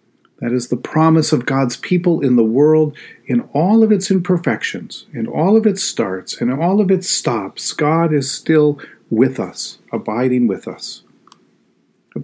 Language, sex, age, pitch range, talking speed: English, male, 50-69, 120-170 Hz, 165 wpm